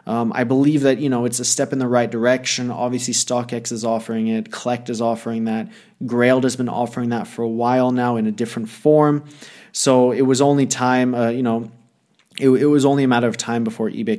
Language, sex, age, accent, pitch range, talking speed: English, male, 20-39, Canadian, 115-130 Hz, 225 wpm